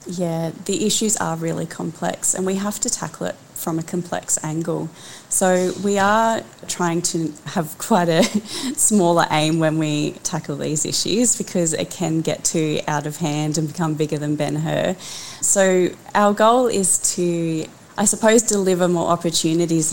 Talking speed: 165 wpm